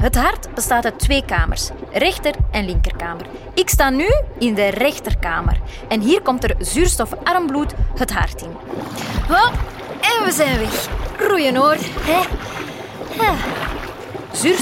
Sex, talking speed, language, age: female, 125 wpm, Dutch, 20-39